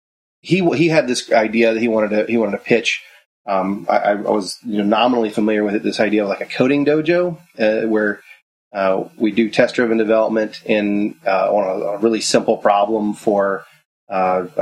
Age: 30-49